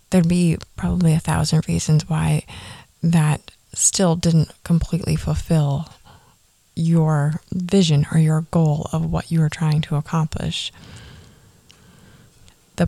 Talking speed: 115 wpm